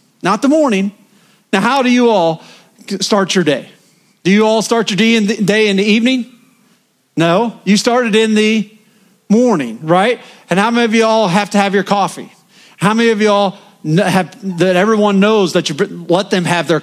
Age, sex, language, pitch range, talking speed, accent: 40-59, male, English, 185-235 Hz, 195 wpm, American